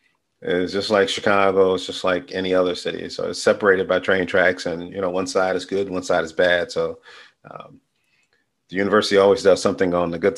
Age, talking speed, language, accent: 40-59, 215 wpm, English, American